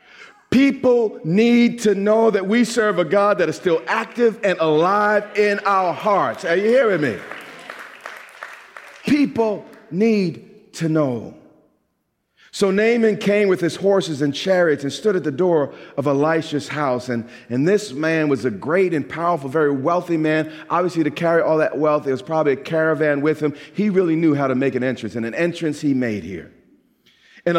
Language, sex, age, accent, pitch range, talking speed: English, male, 40-59, American, 135-200 Hz, 180 wpm